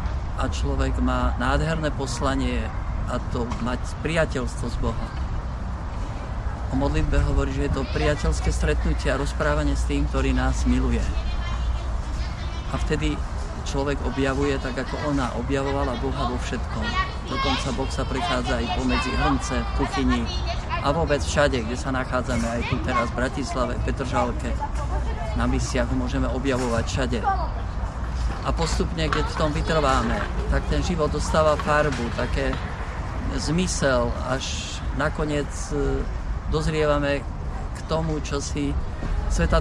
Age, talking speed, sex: 50-69, 125 wpm, male